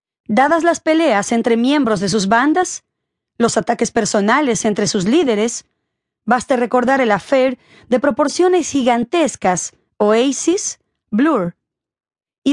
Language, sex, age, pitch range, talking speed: Spanish, female, 30-49, 215-310 Hz, 115 wpm